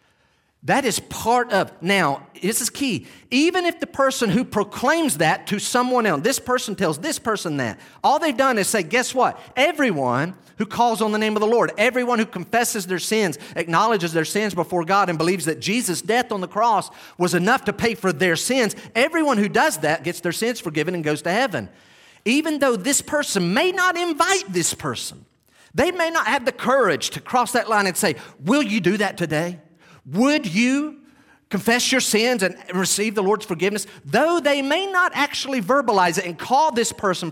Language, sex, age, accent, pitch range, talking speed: English, male, 40-59, American, 160-250 Hz, 200 wpm